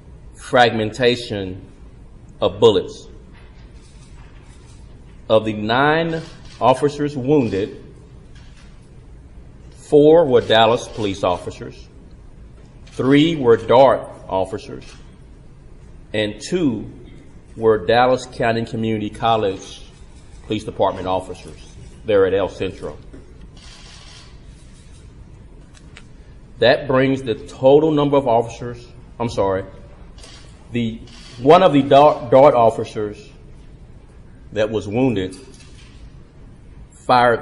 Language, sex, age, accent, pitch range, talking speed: English, male, 40-59, American, 105-135 Hz, 80 wpm